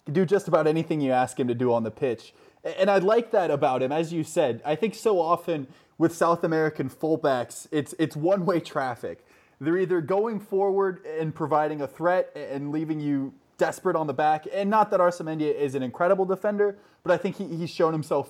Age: 20-39